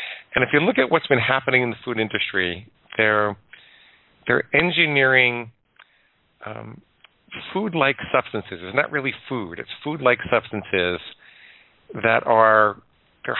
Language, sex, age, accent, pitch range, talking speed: English, male, 40-59, American, 100-130 Hz, 125 wpm